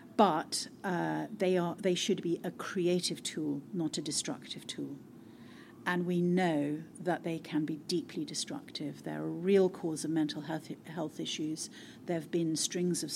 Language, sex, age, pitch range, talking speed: English, female, 50-69, 160-205 Hz, 165 wpm